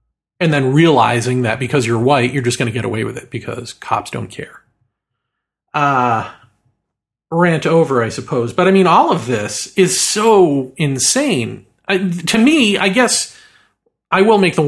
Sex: male